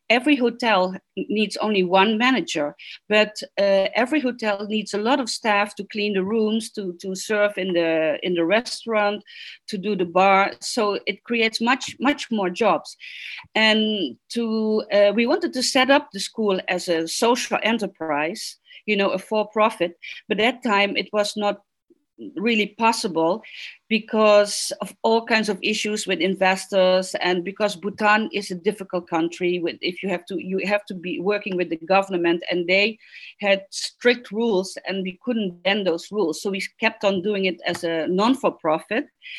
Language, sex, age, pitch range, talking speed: English, female, 50-69, 180-225 Hz, 175 wpm